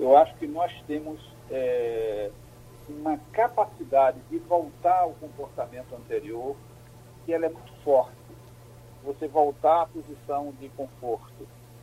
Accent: Brazilian